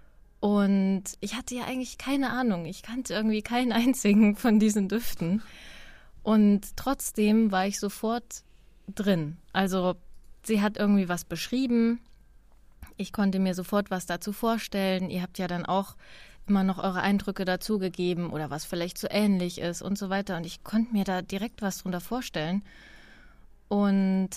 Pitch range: 185-215 Hz